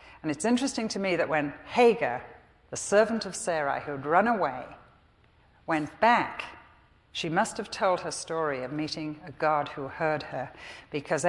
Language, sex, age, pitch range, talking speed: English, female, 60-79, 150-180 Hz, 165 wpm